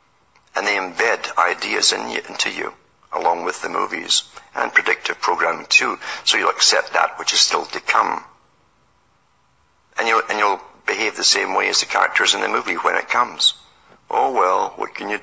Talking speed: 185 wpm